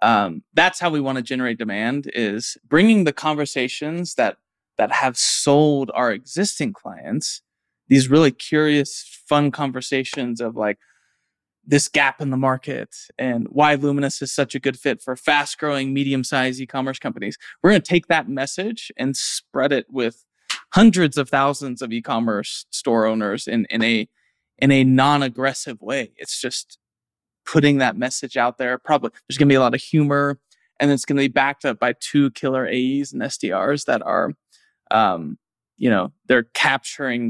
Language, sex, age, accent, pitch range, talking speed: English, male, 20-39, American, 125-145 Hz, 170 wpm